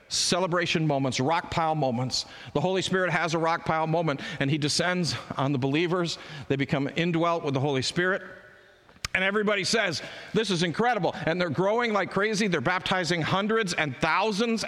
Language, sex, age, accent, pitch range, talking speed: English, male, 50-69, American, 155-200 Hz, 170 wpm